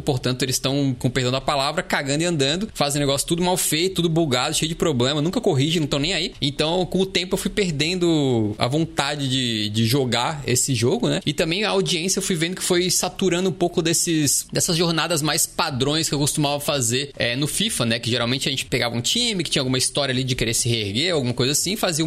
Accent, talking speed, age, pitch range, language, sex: Brazilian, 235 wpm, 20-39, 130-170 Hz, Portuguese, male